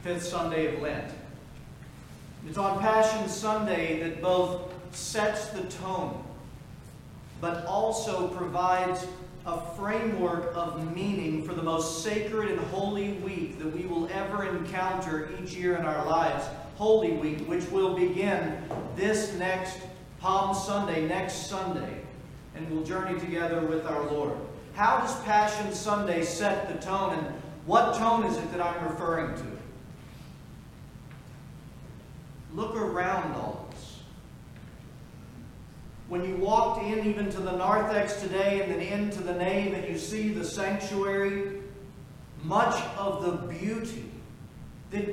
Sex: male